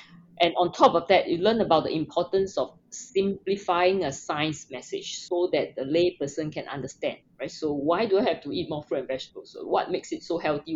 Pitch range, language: 155-215 Hz, English